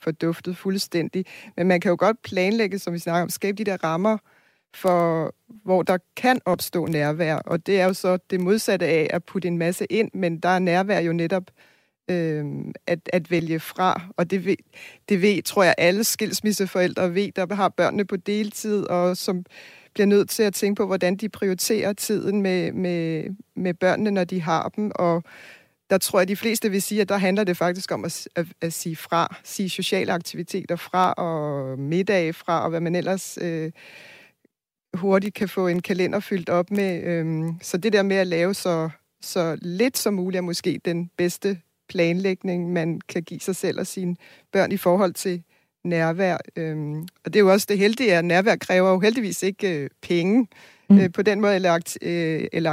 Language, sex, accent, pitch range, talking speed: Danish, female, native, 170-200 Hz, 200 wpm